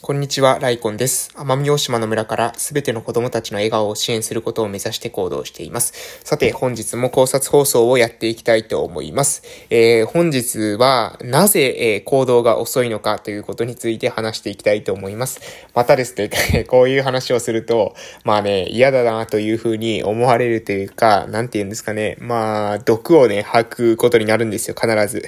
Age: 20-39